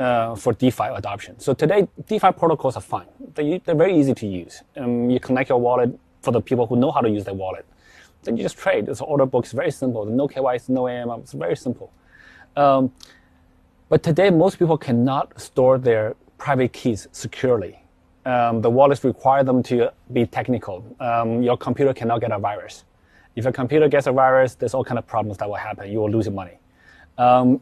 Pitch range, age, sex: 120-145 Hz, 30-49, male